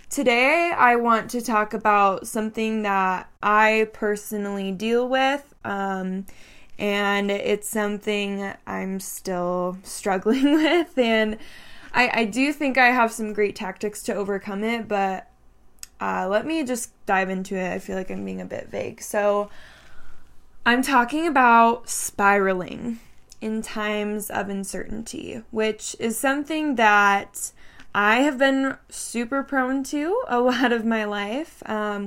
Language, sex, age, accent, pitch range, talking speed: English, female, 10-29, American, 205-245 Hz, 140 wpm